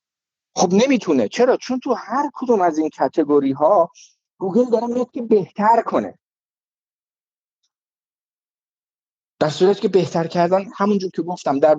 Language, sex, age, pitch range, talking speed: Persian, male, 50-69, 155-220 Hz, 130 wpm